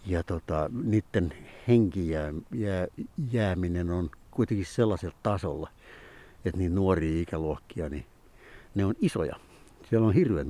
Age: 60-79